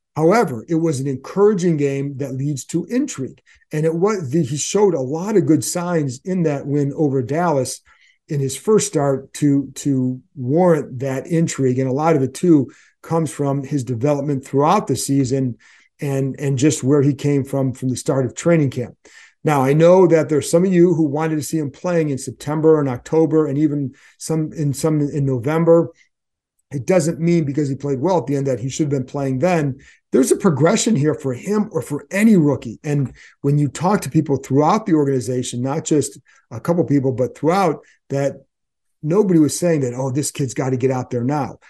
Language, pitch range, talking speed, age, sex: English, 135-165 Hz, 205 wpm, 40-59, male